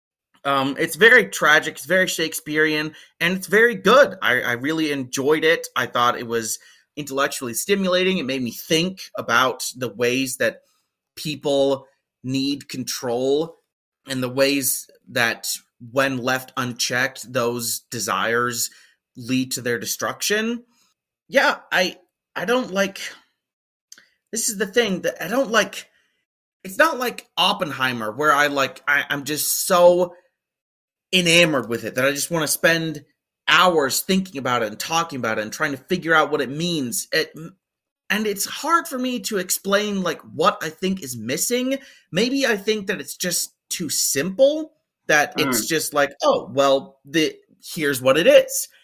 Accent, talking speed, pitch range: American, 155 wpm, 135-195 Hz